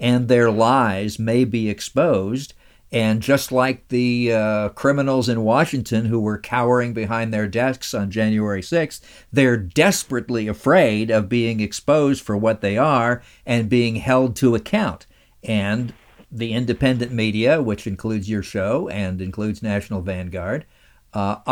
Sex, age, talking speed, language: male, 50-69, 140 wpm, English